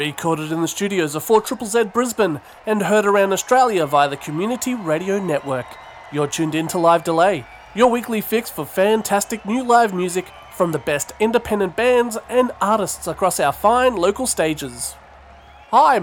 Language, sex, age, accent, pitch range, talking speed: English, male, 30-49, Australian, 155-230 Hz, 160 wpm